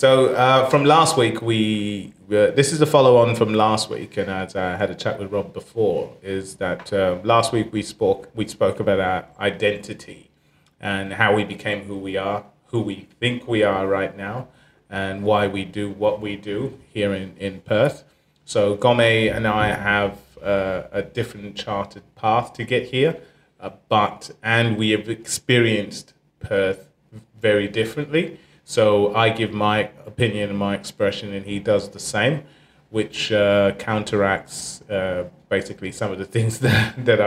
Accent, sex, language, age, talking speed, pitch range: British, male, English, 30-49, 170 wpm, 100-115 Hz